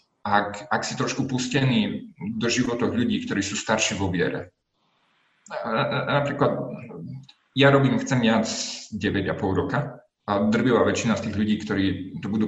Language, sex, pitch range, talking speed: Slovak, male, 105-140 Hz, 150 wpm